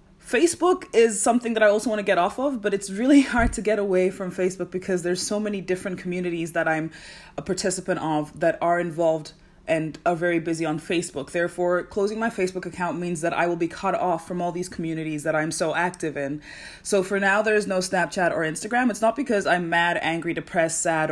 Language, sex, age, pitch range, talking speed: English, female, 20-39, 165-195 Hz, 220 wpm